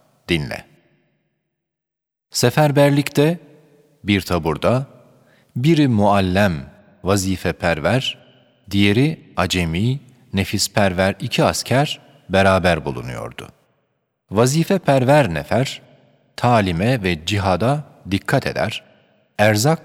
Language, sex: Turkish, male